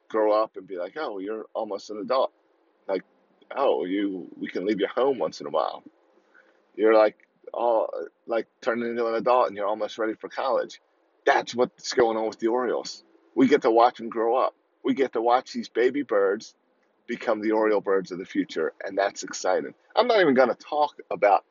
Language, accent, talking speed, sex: English, American, 205 wpm, male